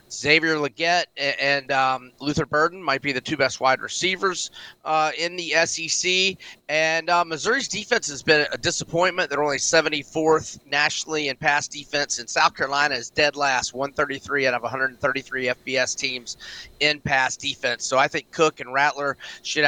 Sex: male